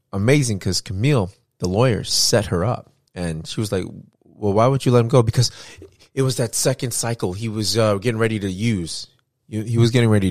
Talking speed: 210 wpm